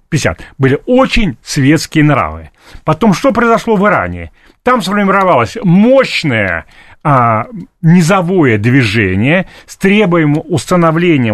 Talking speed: 100 wpm